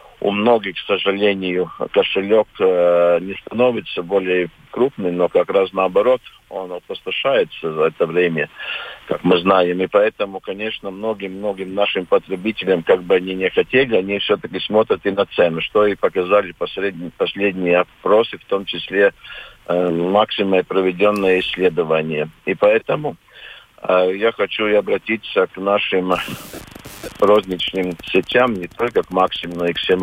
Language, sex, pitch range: Russian, male, 90-105 Hz